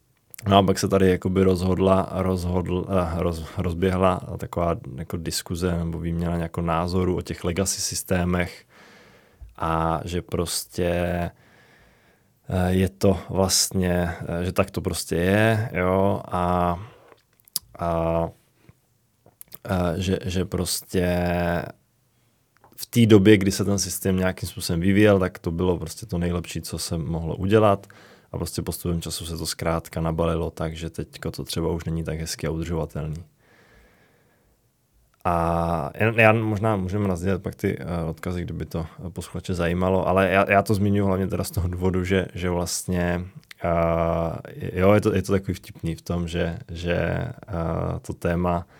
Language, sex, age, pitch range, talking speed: Czech, male, 20-39, 85-95 Hz, 135 wpm